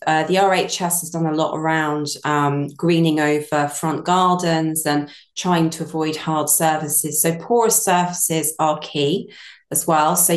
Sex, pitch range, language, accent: female, 155-180 Hz, English, British